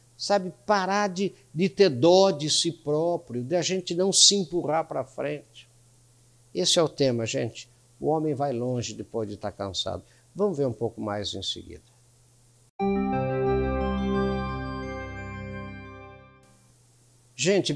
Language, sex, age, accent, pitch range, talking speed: Portuguese, male, 60-79, Brazilian, 120-180 Hz, 130 wpm